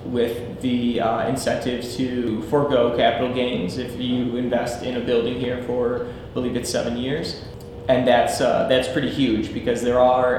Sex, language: male, English